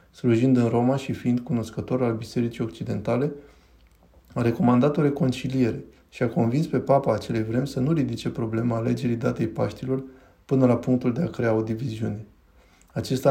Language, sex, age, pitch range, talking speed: Romanian, male, 20-39, 115-130 Hz, 160 wpm